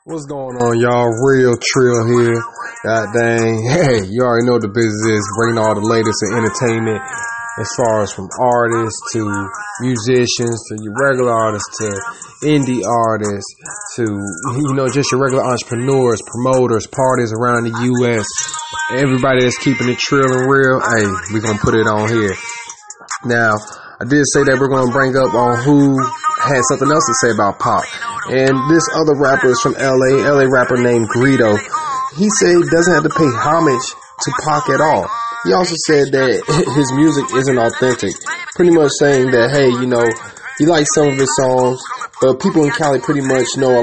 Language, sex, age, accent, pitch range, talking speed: English, male, 20-39, American, 115-145 Hz, 185 wpm